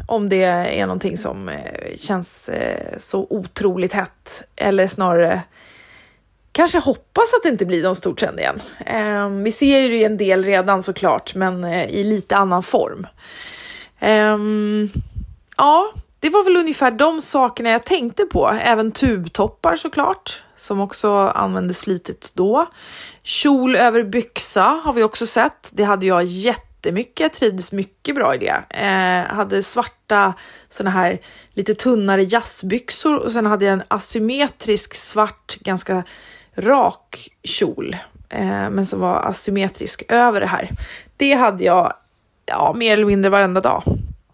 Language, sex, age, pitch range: Swedish, female, 20-39, 195-245 Hz